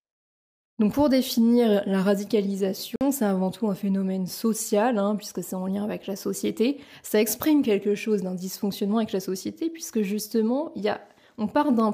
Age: 20-39